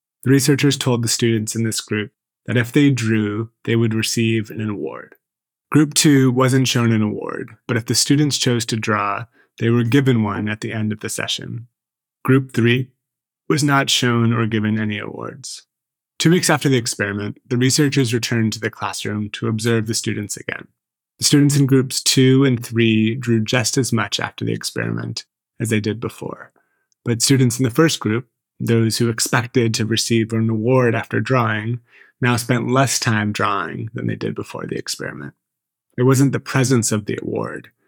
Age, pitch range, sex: 30-49, 110-130 Hz, male